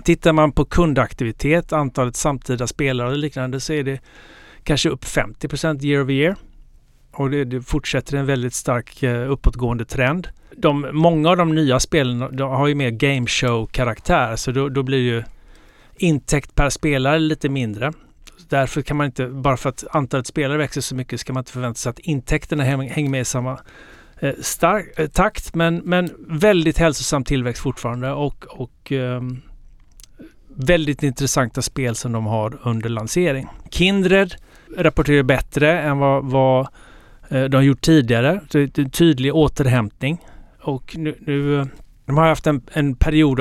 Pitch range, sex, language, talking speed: 130-155 Hz, male, Swedish, 155 wpm